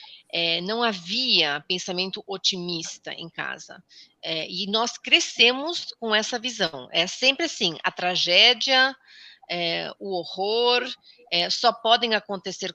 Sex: female